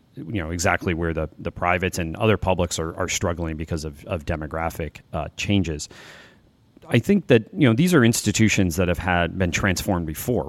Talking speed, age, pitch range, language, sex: 190 wpm, 30-49, 80-100 Hz, English, male